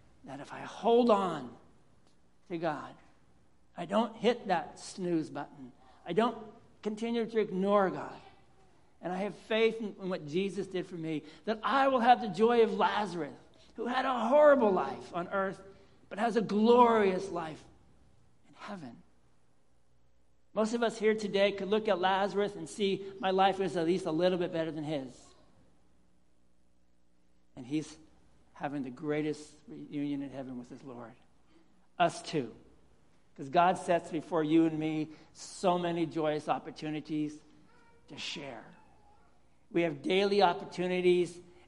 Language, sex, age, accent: English, male, 60-79, American